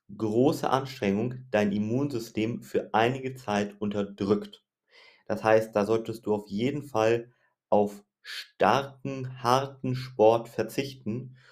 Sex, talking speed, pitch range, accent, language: male, 110 wpm, 105-130 Hz, German, German